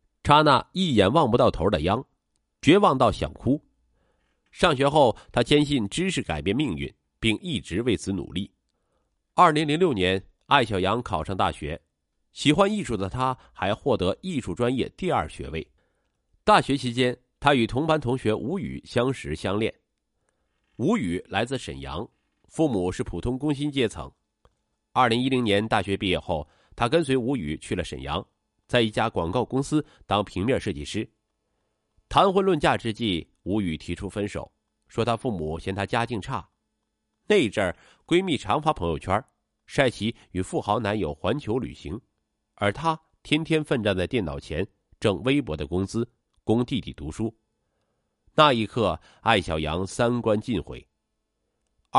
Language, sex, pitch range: Chinese, male, 95-135 Hz